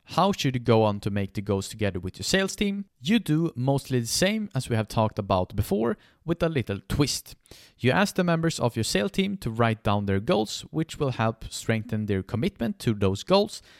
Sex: male